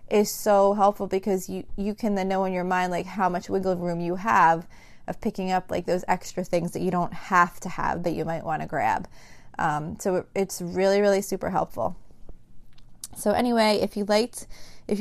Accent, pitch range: American, 180-210 Hz